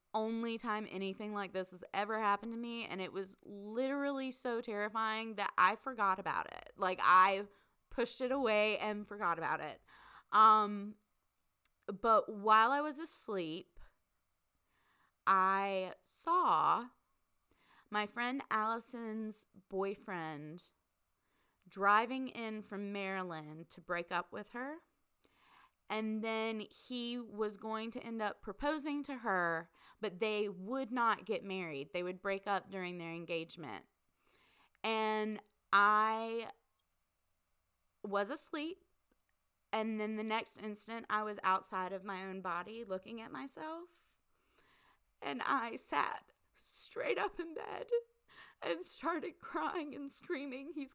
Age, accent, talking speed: 20-39, American, 125 wpm